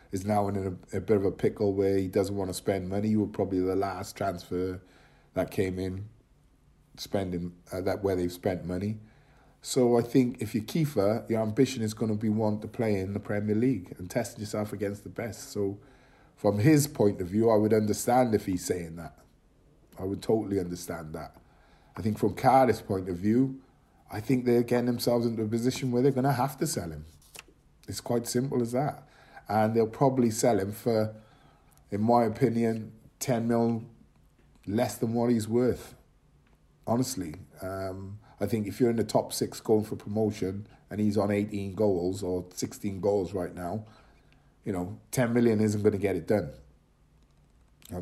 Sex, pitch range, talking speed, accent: male, 100-120 Hz, 190 wpm, British